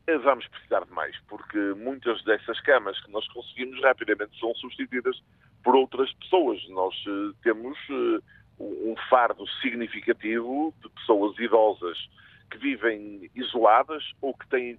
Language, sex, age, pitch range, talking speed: Portuguese, male, 50-69, 120-180 Hz, 125 wpm